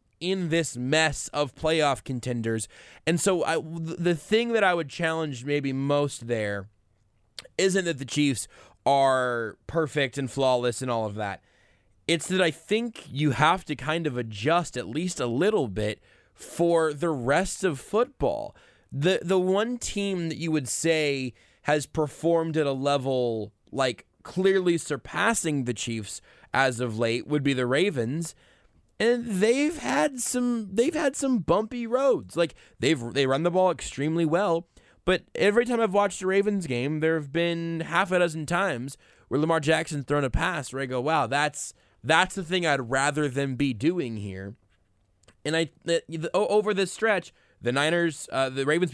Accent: American